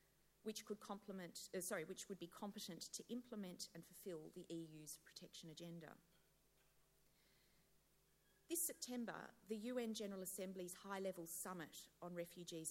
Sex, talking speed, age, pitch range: female, 115 wpm, 40-59, 170-210 Hz